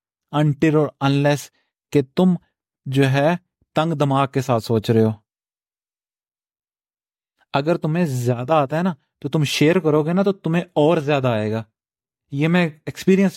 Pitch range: 135-175 Hz